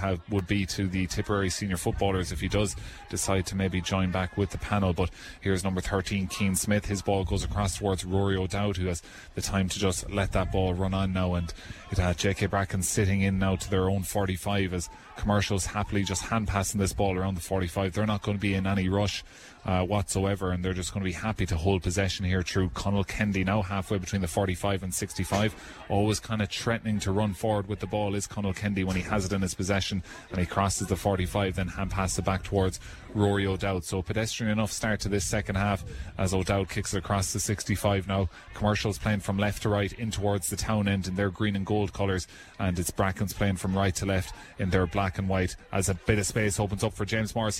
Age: 20-39